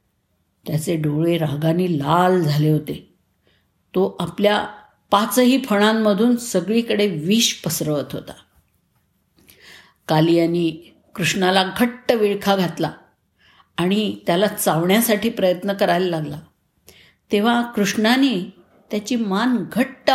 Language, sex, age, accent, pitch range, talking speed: Marathi, female, 50-69, native, 165-225 Hz, 90 wpm